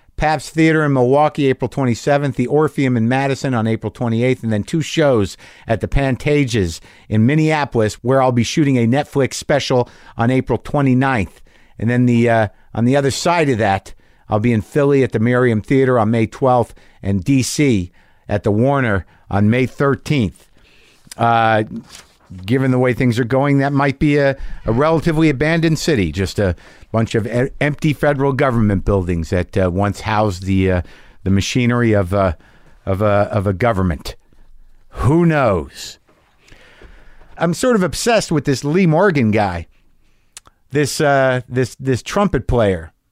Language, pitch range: English, 105-145 Hz